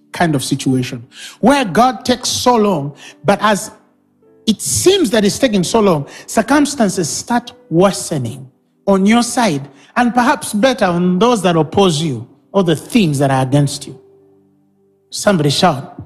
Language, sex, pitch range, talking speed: English, male, 145-220 Hz, 150 wpm